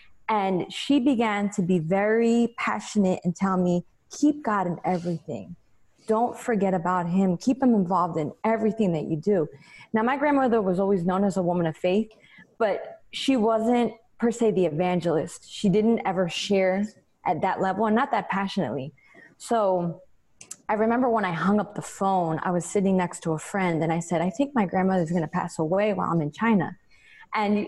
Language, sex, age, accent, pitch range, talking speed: English, female, 20-39, American, 180-225 Hz, 190 wpm